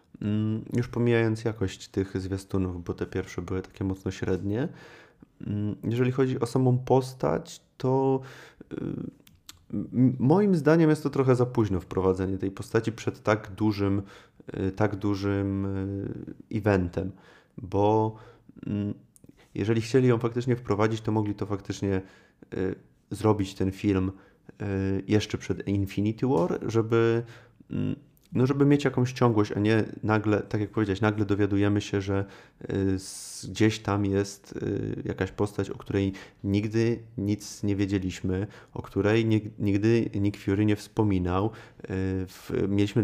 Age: 30-49